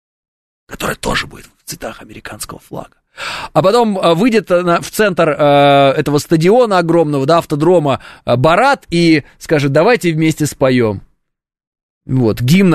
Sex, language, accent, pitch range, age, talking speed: male, Russian, native, 130-175 Hz, 20-39, 120 wpm